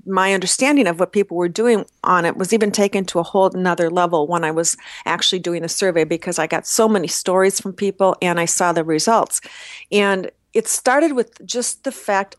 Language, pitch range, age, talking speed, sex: English, 175-210 Hz, 40-59, 215 wpm, female